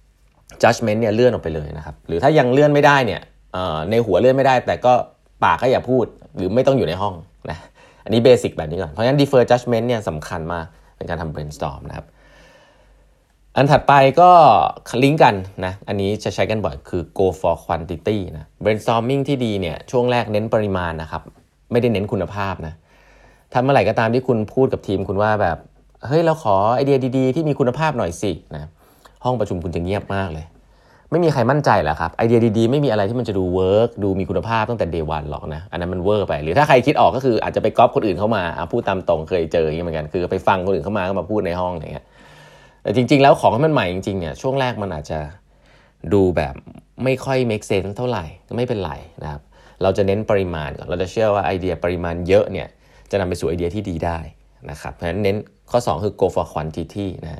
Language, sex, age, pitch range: Thai, male, 20-39, 85-120 Hz